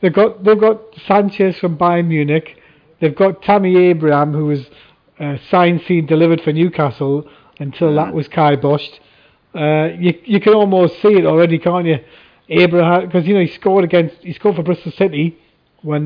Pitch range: 160-185 Hz